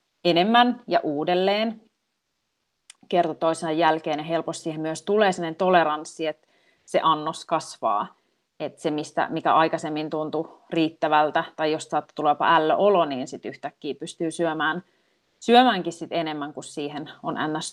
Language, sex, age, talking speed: Finnish, female, 30-49, 140 wpm